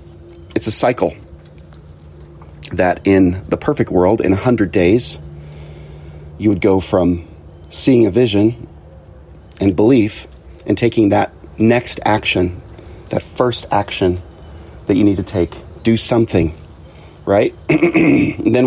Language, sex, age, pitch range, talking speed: English, male, 40-59, 80-105 Hz, 120 wpm